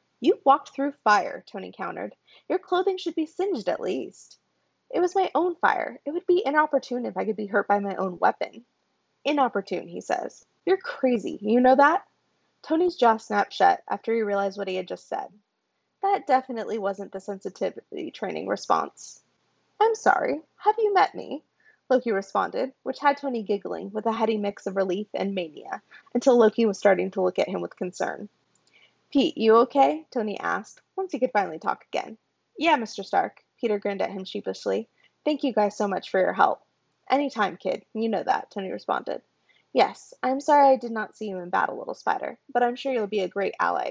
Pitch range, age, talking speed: 200-305 Hz, 20-39, 195 wpm